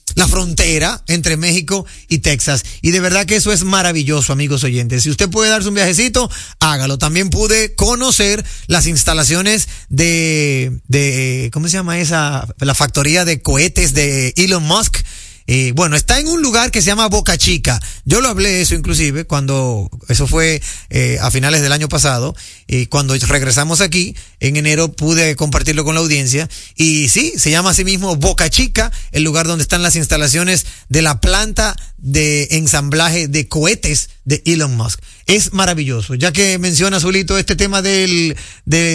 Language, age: Spanish, 30-49